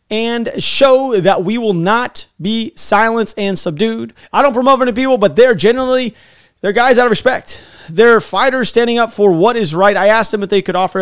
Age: 30-49